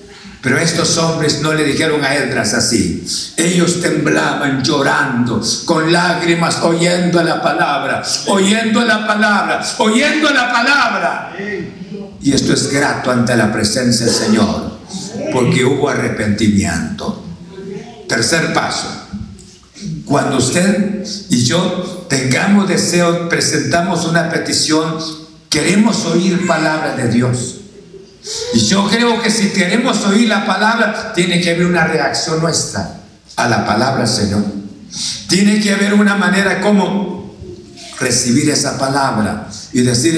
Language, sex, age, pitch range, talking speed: Spanish, male, 60-79, 130-195 Hz, 120 wpm